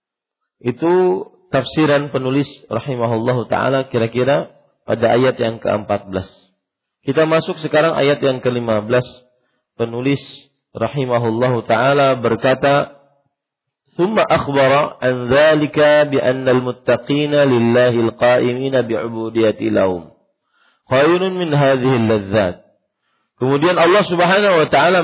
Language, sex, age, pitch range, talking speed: Malay, male, 40-59, 120-155 Hz, 90 wpm